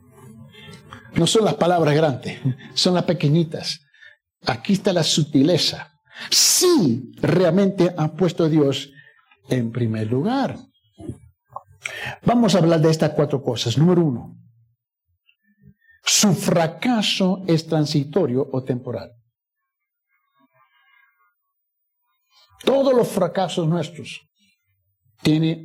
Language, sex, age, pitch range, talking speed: Spanish, male, 60-79, 130-200 Hz, 95 wpm